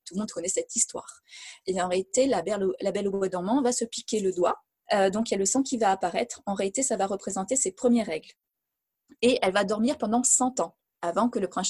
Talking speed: 240 wpm